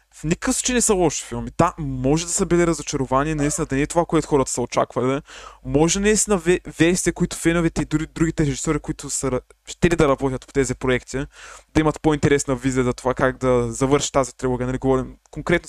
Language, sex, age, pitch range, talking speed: Bulgarian, male, 20-39, 135-185 Hz, 205 wpm